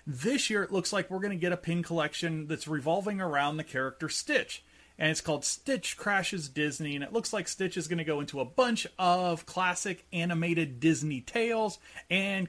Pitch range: 145-190 Hz